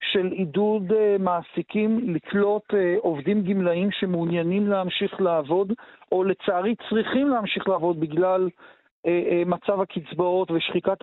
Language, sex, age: Hebrew, male, 50-69